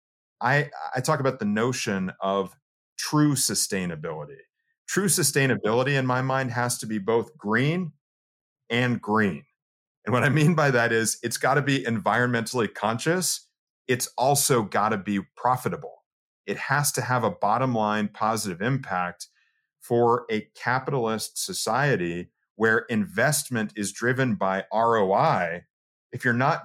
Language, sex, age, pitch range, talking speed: English, male, 40-59, 105-135 Hz, 140 wpm